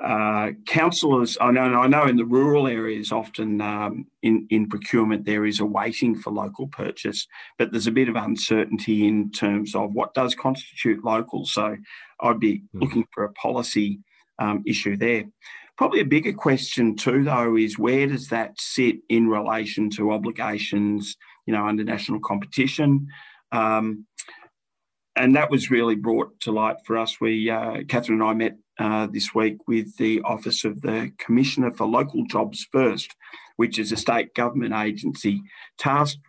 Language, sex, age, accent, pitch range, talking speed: English, male, 40-59, Australian, 105-125 Hz, 165 wpm